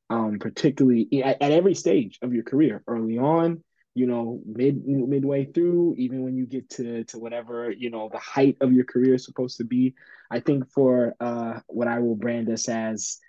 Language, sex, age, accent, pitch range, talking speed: English, male, 20-39, American, 115-135 Hz, 200 wpm